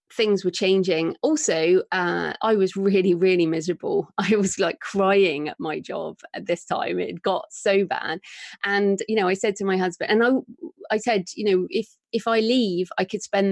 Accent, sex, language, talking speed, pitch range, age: British, female, English, 200 wpm, 180-215 Hz, 30-49